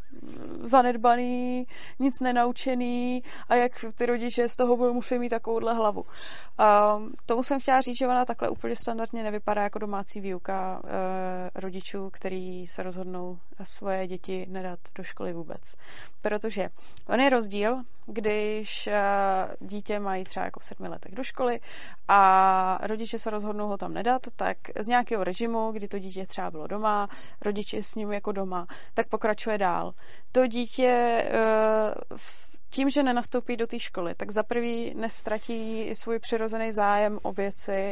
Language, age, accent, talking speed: Czech, 20-39, native, 150 wpm